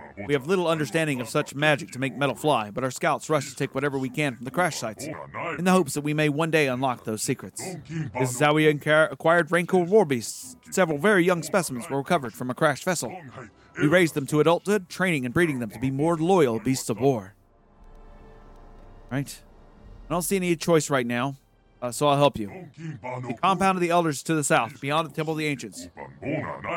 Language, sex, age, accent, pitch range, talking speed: English, male, 30-49, American, 125-165 Hz, 215 wpm